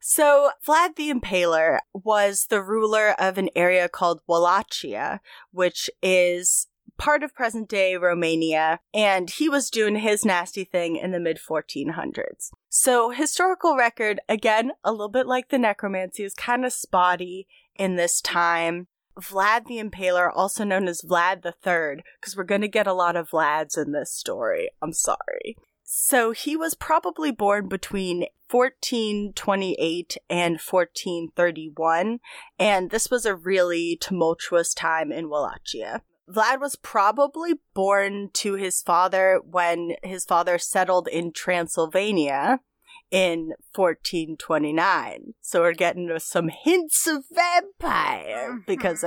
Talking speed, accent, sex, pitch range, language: 130 wpm, American, female, 175-240 Hz, English